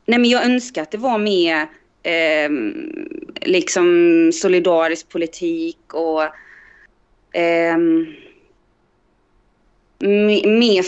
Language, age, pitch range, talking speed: Swedish, 20-39, 155-210 Hz, 85 wpm